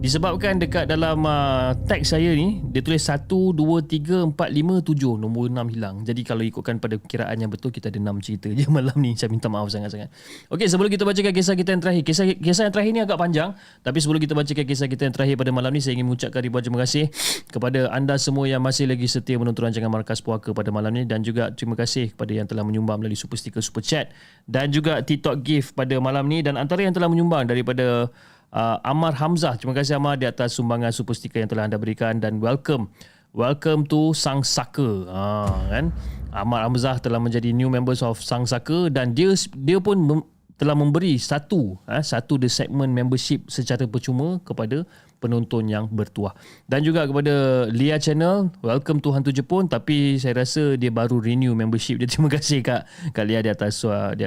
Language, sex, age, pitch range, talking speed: Malay, male, 20-39, 115-155 Hz, 205 wpm